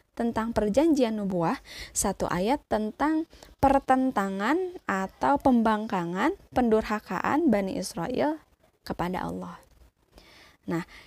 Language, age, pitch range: Indonesian, 20-39, 195-275 Hz